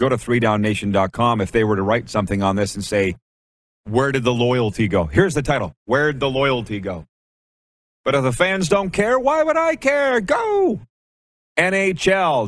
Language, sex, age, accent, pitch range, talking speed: English, male, 40-59, American, 110-140 Hz, 180 wpm